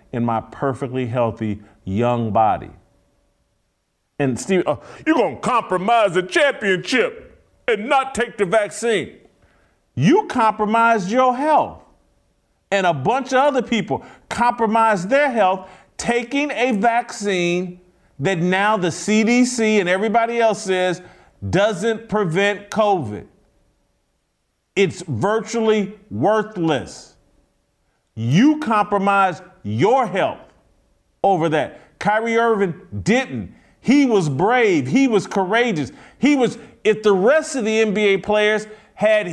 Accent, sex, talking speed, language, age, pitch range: American, male, 115 wpm, English, 40-59, 160-225 Hz